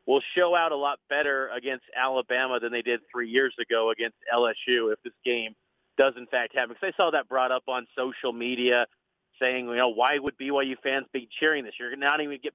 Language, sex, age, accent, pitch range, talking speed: English, male, 40-59, American, 125-155 Hz, 220 wpm